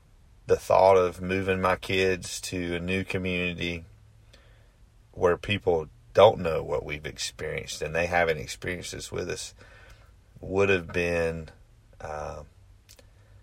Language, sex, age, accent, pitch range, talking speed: English, male, 30-49, American, 85-110 Hz, 130 wpm